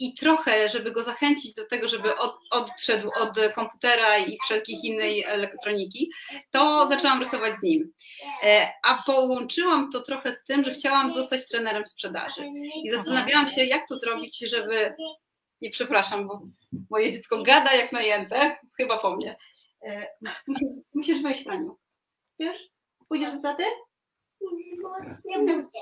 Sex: female